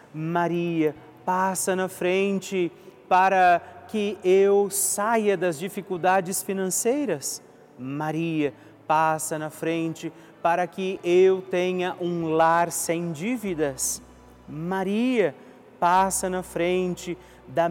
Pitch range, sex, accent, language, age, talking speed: 155-185 Hz, male, Brazilian, Portuguese, 40-59, 95 wpm